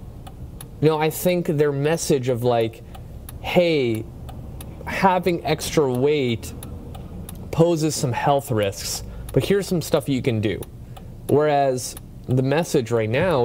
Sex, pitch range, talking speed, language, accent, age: male, 115-140 Hz, 120 wpm, English, American, 30-49